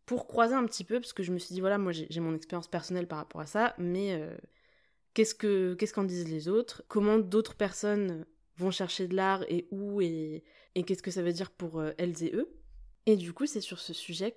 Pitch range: 170-210 Hz